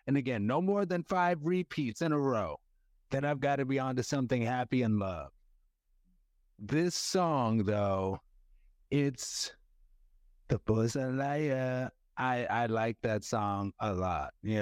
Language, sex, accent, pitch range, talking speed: English, male, American, 110-180 Hz, 145 wpm